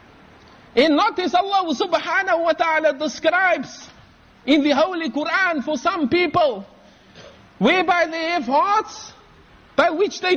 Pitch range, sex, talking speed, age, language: 230-335 Hz, male, 120 wpm, 50-69, English